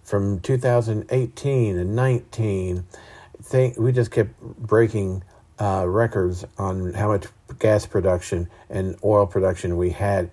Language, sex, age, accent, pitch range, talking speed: English, male, 50-69, American, 95-115 Hz, 115 wpm